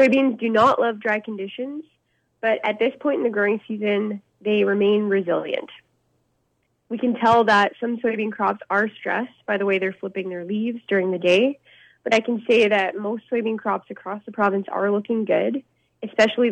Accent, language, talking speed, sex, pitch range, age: American, English, 185 wpm, female, 195-230 Hz, 20-39